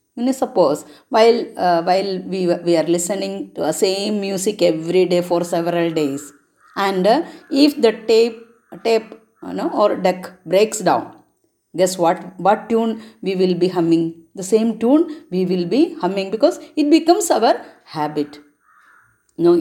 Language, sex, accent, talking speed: Malayalam, female, native, 165 wpm